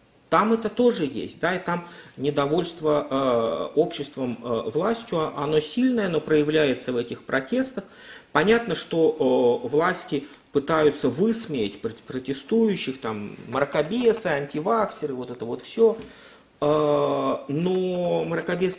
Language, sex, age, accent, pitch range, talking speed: Russian, male, 40-59, native, 140-195 Hz, 115 wpm